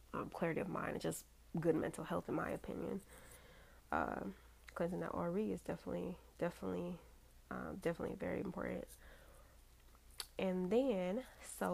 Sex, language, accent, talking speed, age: female, English, American, 135 wpm, 20-39